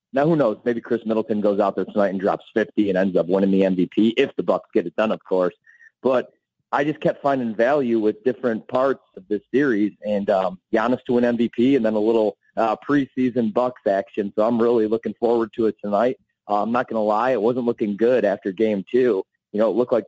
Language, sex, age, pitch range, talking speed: English, male, 30-49, 105-130 Hz, 235 wpm